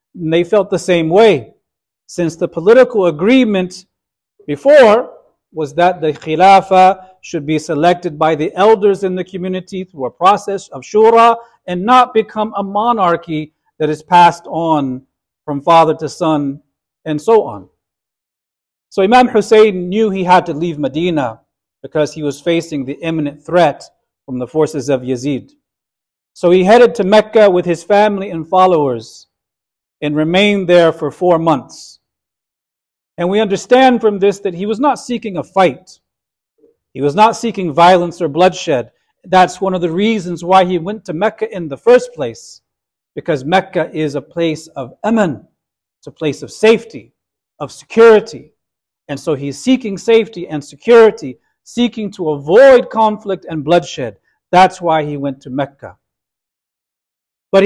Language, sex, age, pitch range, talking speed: English, male, 40-59, 155-210 Hz, 155 wpm